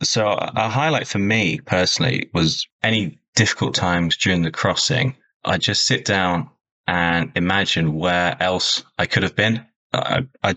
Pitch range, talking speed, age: 85-100 Hz, 155 wpm, 20-39